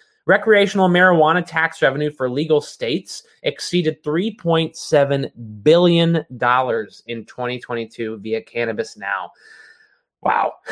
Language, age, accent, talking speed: English, 30-49, American, 90 wpm